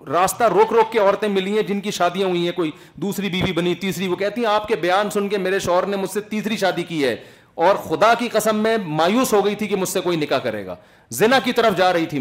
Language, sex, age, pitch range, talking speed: Urdu, male, 40-59, 155-210 Hz, 280 wpm